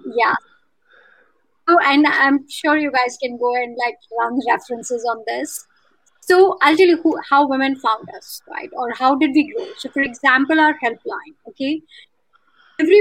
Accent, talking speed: Indian, 170 wpm